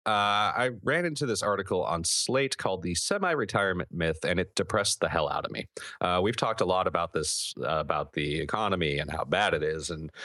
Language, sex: English, male